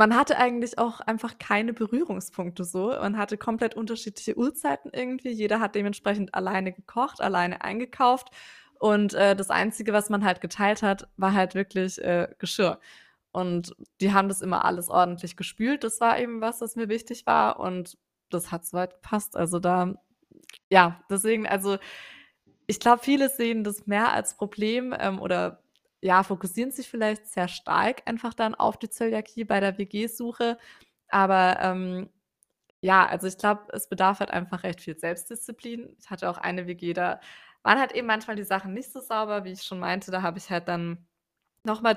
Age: 20-39